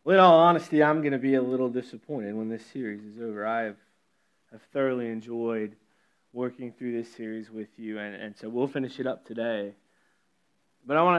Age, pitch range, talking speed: 30-49, 120-160 Hz, 205 wpm